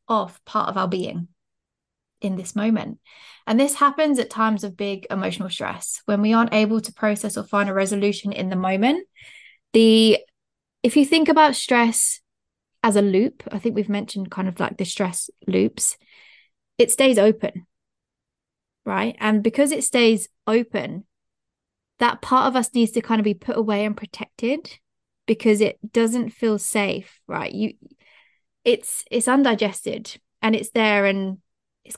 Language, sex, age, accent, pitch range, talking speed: English, female, 20-39, British, 205-255 Hz, 160 wpm